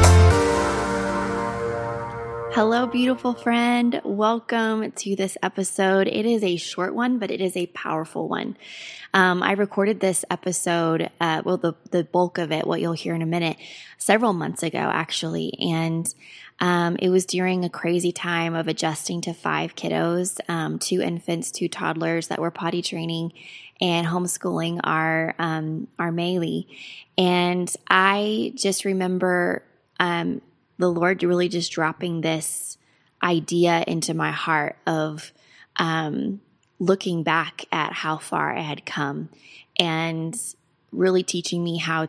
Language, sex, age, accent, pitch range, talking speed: English, female, 20-39, American, 160-185 Hz, 140 wpm